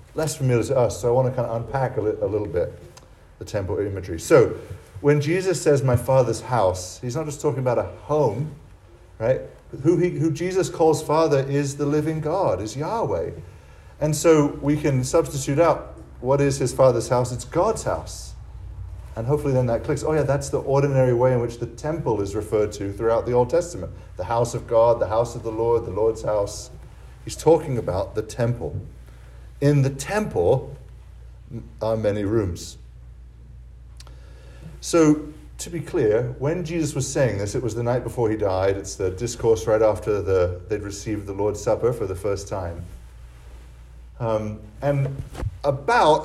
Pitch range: 105-145 Hz